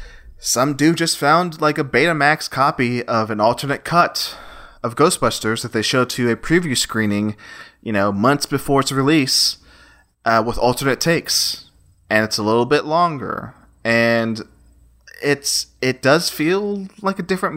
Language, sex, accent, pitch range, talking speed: English, male, American, 105-140 Hz, 155 wpm